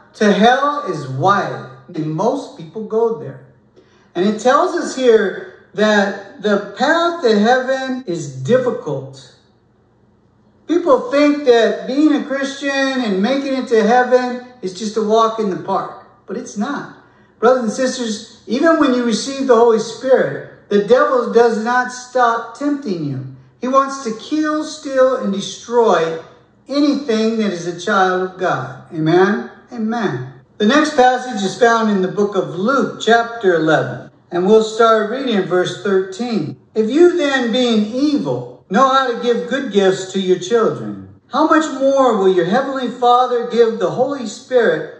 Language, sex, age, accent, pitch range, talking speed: English, male, 50-69, American, 190-255 Hz, 160 wpm